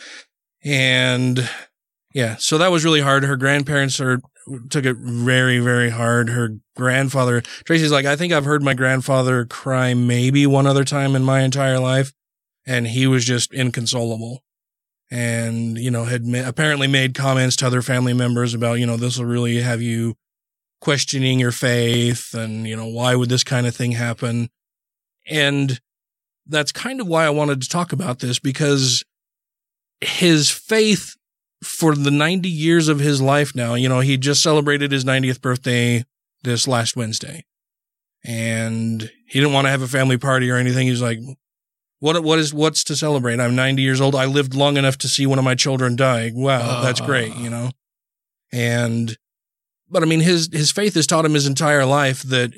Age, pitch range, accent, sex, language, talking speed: 20-39, 120-140 Hz, American, male, English, 180 wpm